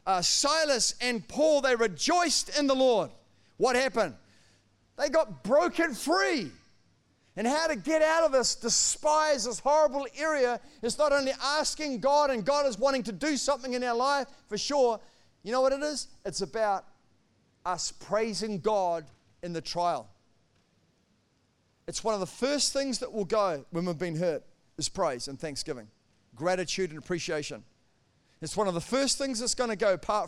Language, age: English, 40-59